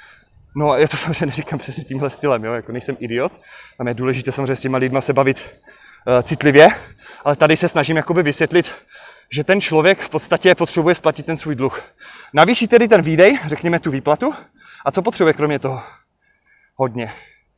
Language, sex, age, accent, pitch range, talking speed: Czech, male, 30-49, native, 135-165 Hz, 180 wpm